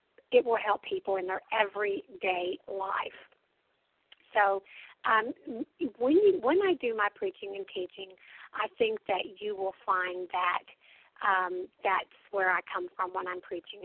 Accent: American